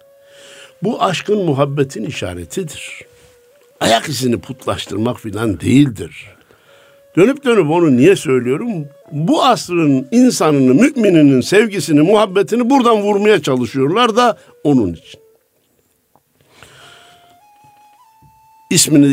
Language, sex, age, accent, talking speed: Turkish, male, 60-79, native, 85 wpm